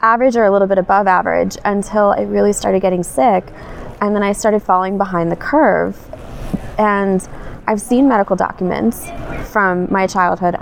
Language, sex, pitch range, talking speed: English, female, 175-220 Hz, 165 wpm